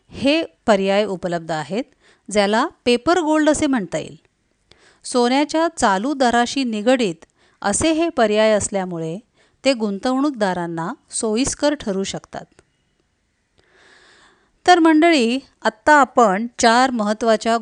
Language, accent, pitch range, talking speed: Marathi, native, 200-260 Hz, 100 wpm